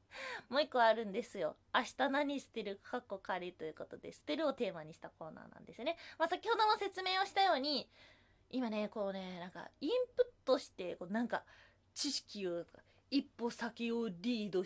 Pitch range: 190-305 Hz